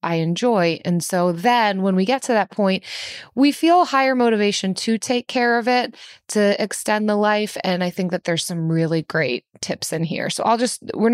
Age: 20-39